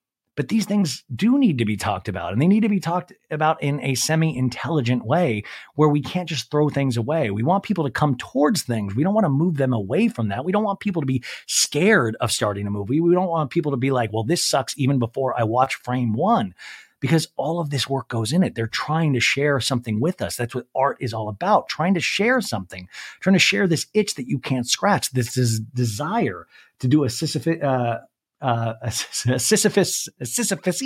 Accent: American